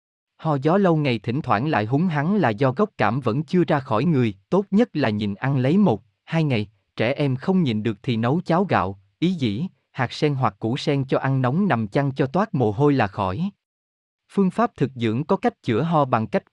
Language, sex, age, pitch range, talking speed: Vietnamese, male, 20-39, 115-165 Hz, 230 wpm